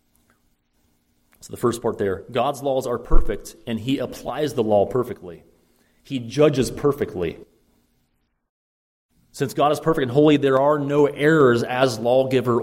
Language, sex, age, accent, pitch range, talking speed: English, male, 30-49, American, 95-130 Hz, 145 wpm